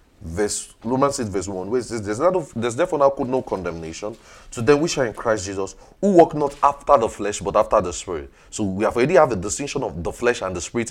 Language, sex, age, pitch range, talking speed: English, male, 30-49, 105-150 Hz, 220 wpm